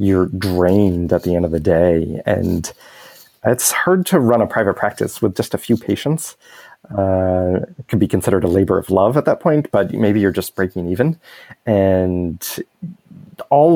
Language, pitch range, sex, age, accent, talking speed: English, 95-120 Hz, male, 30-49, American, 180 wpm